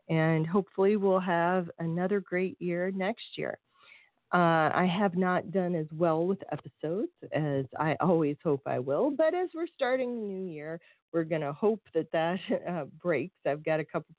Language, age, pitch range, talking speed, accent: English, 40-59, 150-195 Hz, 180 wpm, American